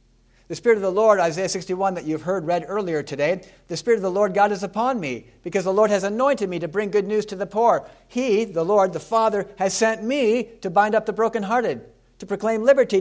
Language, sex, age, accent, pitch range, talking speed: English, male, 50-69, American, 160-220 Hz, 235 wpm